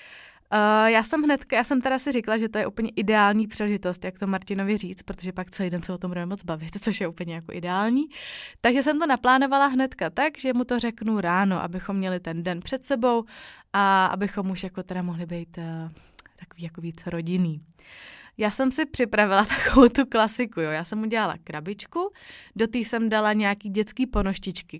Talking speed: 200 wpm